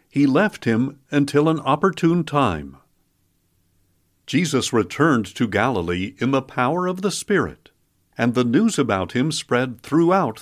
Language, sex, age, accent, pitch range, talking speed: English, male, 60-79, American, 110-160 Hz, 140 wpm